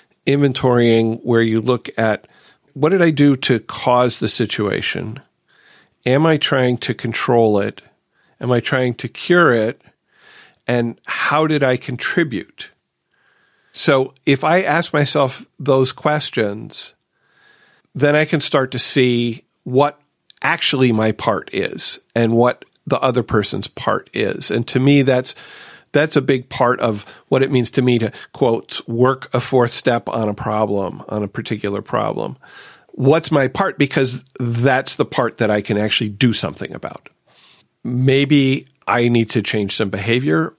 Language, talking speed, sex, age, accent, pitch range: English, 150 wpm, male, 40-59, American, 110-135 Hz